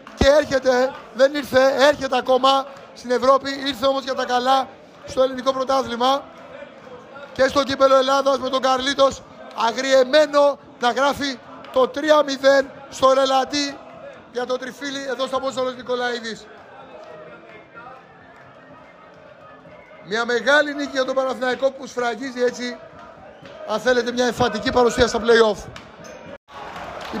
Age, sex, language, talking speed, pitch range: 30-49, male, Greek, 120 wpm, 250-290 Hz